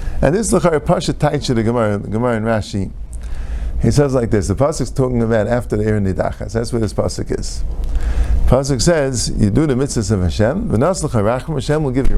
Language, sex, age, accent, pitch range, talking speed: English, male, 50-69, American, 90-145 Hz, 215 wpm